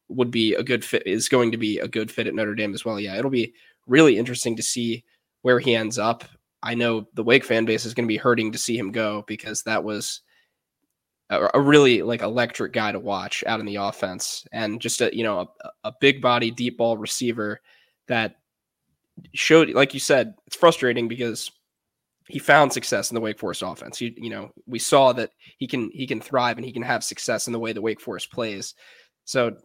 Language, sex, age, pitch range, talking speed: English, male, 10-29, 110-125 Hz, 225 wpm